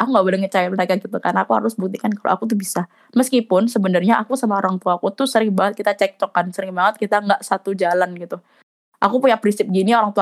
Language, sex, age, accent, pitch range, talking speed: Indonesian, female, 20-39, native, 190-235 Hz, 240 wpm